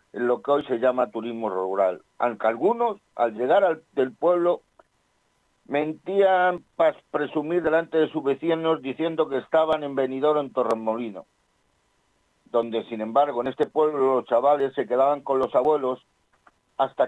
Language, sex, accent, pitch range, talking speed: Spanish, male, Spanish, 125-155 Hz, 150 wpm